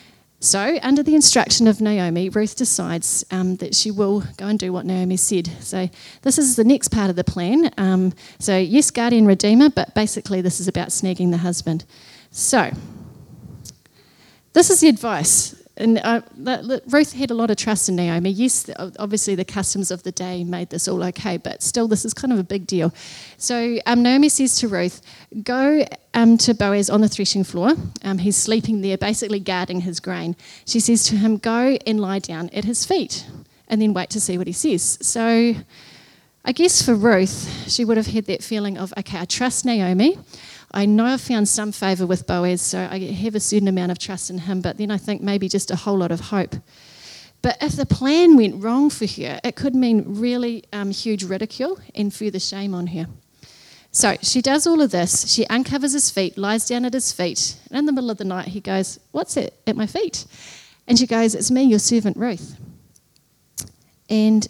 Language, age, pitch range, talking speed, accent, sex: English, 30-49, 185-235 Hz, 205 wpm, Australian, female